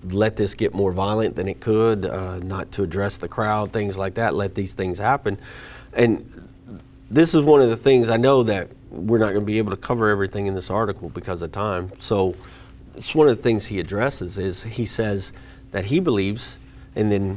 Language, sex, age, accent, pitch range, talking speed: English, male, 40-59, American, 95-120 Hz, 210 wpm